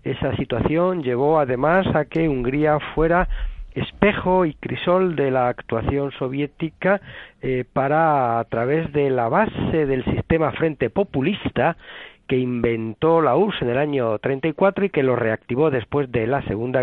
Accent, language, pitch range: Spanish, Spanish, 130-170 Hz